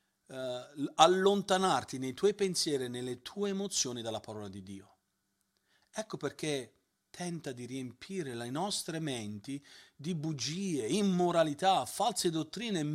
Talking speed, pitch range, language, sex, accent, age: 120 wpm, 145-195 Hz, Italian, male, native, 40-59